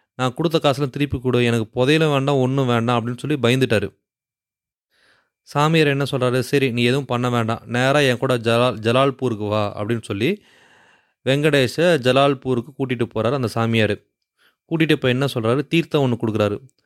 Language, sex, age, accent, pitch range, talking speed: English, male, 30-49, Indian, 115-140 Hz, 145 wpm